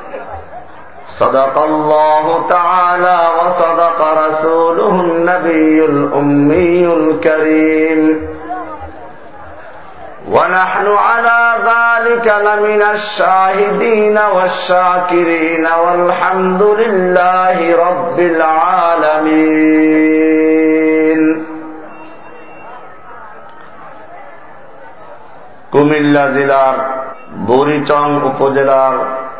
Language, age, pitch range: Bengali, 50-69, 145-175 Hz